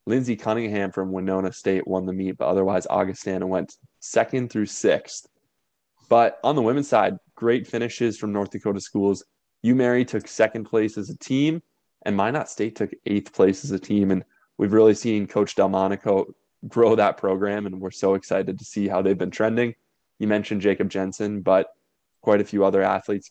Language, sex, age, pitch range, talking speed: English, male, 20-39, 100-115 Hz, 185 wpm